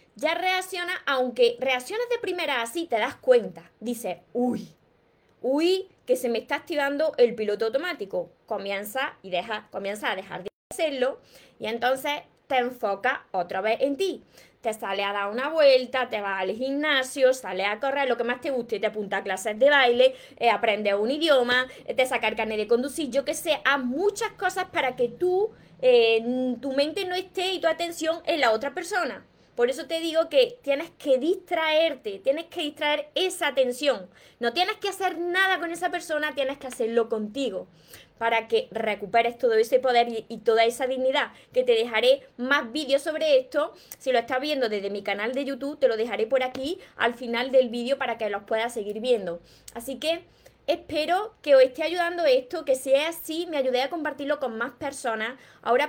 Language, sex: Spanish, female